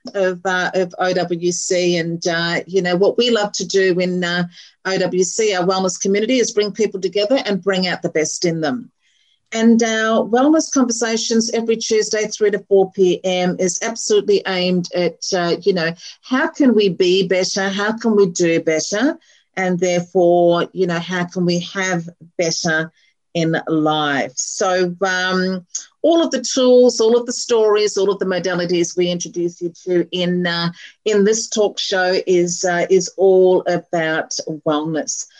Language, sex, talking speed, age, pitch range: English, female, 165 wpm, 50-69, 180-225 Hz